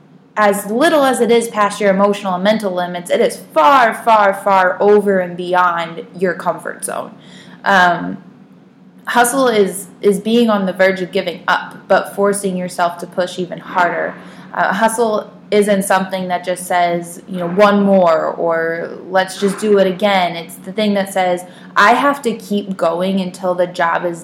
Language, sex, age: English, female, 20-39